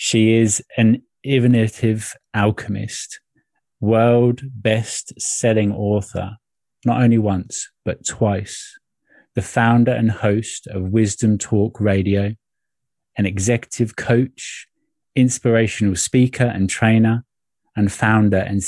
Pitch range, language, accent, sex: 100-120 Hz, English, British, male